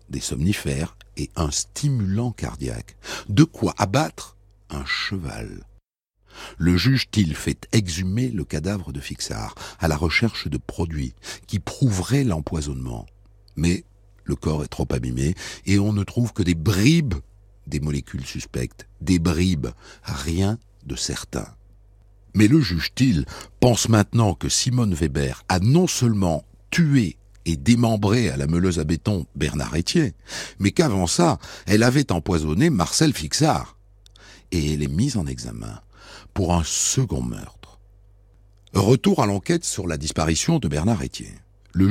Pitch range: 80-110 Hz